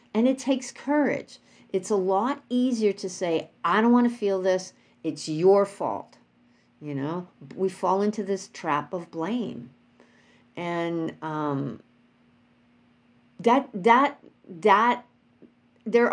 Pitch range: 140-190 Hz